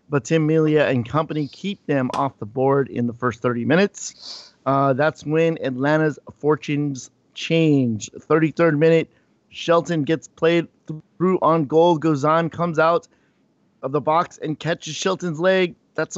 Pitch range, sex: 140-170 Hz, male